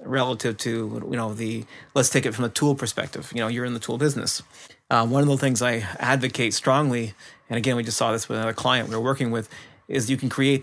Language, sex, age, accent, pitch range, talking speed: English, male, 30-49, American, 115-140 Hz, 245 wpm